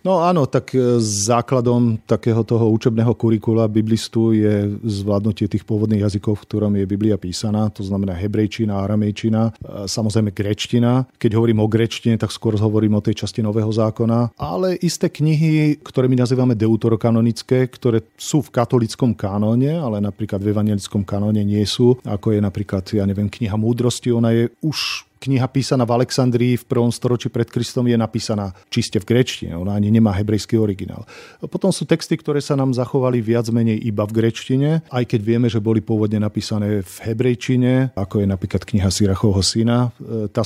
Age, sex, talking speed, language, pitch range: 40-59, male, 170 wpm, Slovak, 105-120 Hz